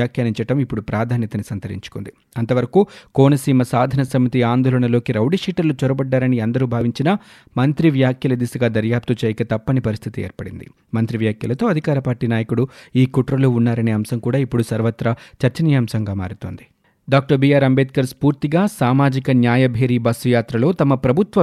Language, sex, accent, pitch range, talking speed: Telugu, male, native, 115-140 Hz, 125 wpm